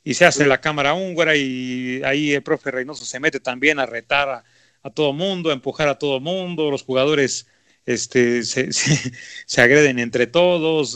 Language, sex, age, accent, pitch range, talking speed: Spanish, male, 40-59, Mexican, 120-145 Hz, 185 wpm